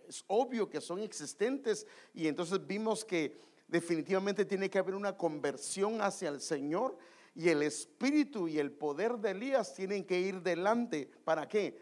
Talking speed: 165 wpm